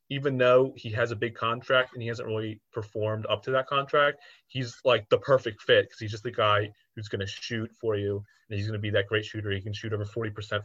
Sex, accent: male, American